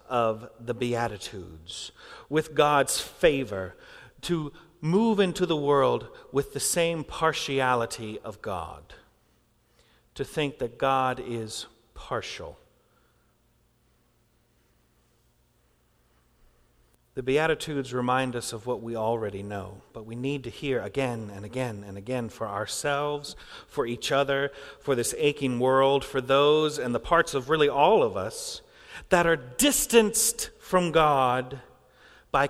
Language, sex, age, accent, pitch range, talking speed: English, male, 40-59, American, 120-160 Hz, 125 wpm